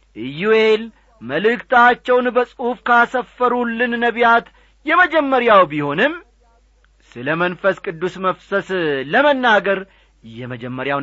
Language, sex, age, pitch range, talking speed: Amharic, male, 40-59, 155-245 Hz, 65 wpm